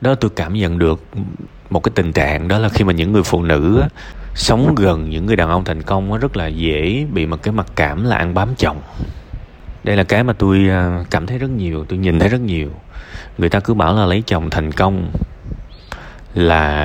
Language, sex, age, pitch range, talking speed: Vietnamese, male, 20-39, 80-105 Hz, 215 wpm